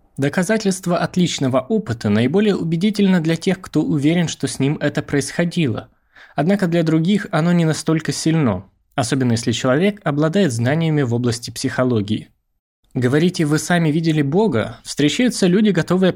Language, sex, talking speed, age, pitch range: Russian, male, 135 wpm, 20-39, 125-175 Hz